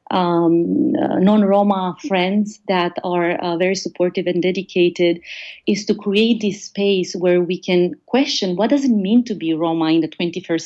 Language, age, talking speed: English, 30-49, 175 wpm